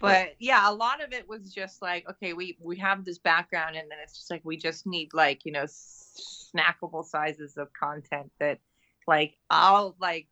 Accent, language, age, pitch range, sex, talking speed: American, English, 30-49, 150-180 Hz, female, 200 wpm